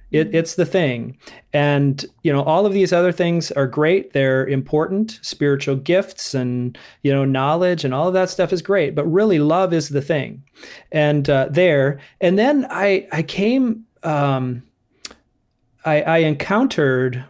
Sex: male